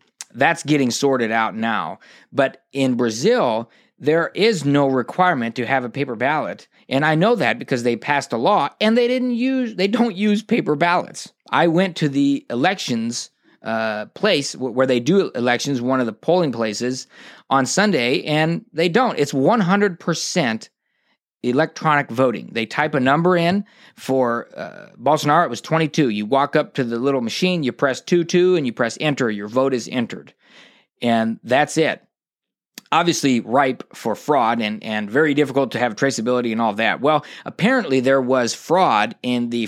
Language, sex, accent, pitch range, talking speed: English, male, American, 120-175 Hz, 175 wpm